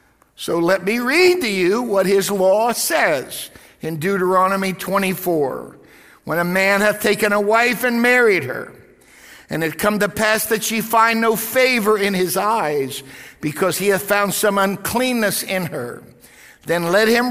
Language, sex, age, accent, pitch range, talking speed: English, male, 60-79, American, 155-210 Hz, 165 wpm